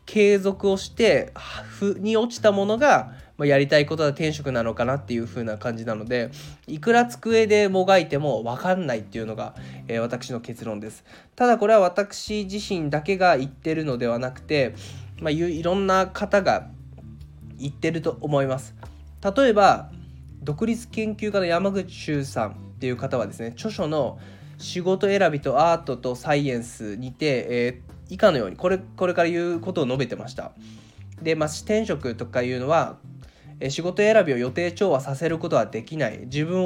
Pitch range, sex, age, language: 125-185 Hz, male, 20-39, Japanese